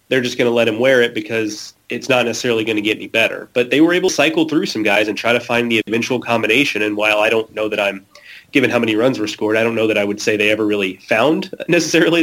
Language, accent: English, American